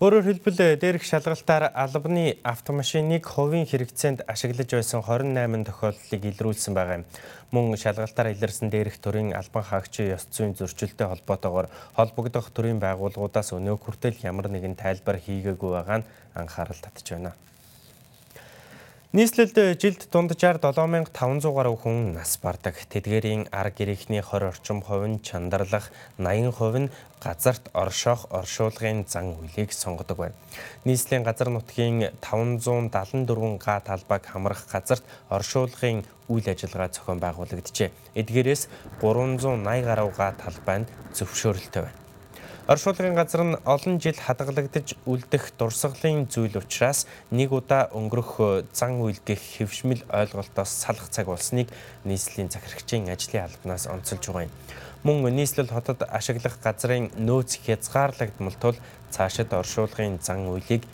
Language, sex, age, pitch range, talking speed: English, male, 20-39, 100-130 Hz, 110 wpm